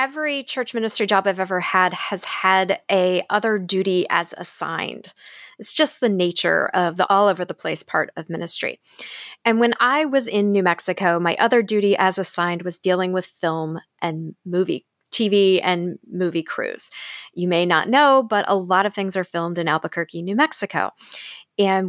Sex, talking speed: female, 180 wpm